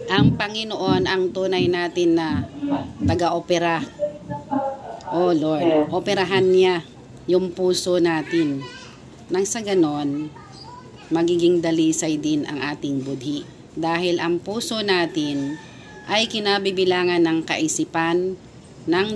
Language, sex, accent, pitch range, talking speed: Filipino, female, native, 155-195 Hz, 105 wpm